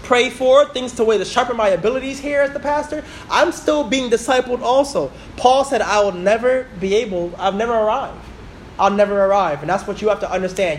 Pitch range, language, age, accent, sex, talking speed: 175-220 Hz, English, 20-39, American, male, 210 wpm